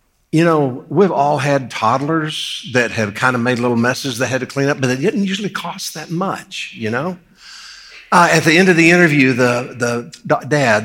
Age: 60-79